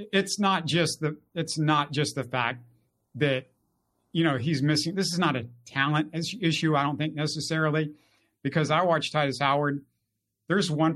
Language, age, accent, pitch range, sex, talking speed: English, 50-69, American, 140-195 Hz, male, 175 wpm